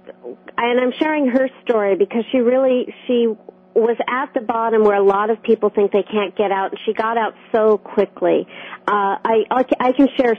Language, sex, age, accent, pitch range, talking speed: English, female, 40-59, American, 185-225 Hz, 195 wpm